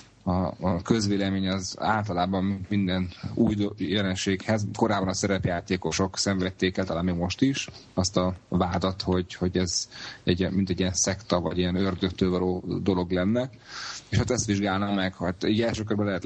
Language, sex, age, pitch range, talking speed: Hungarian, male, 30-49, 90-105 Hz, 155 wpm